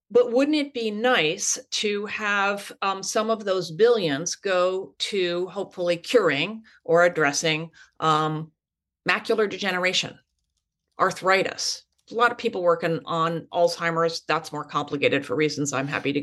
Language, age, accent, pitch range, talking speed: English, 40-59, American, 175-235 Hz, 135 wpm